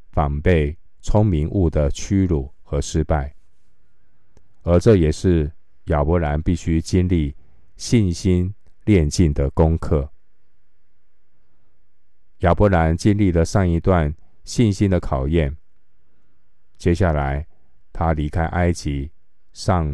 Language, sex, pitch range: Chinese, male, 75-95 Hz